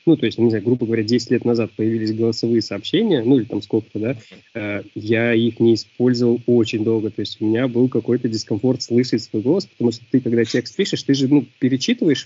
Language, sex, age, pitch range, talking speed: Russian, male, 20-39, 115-135 Hz, 220 wpm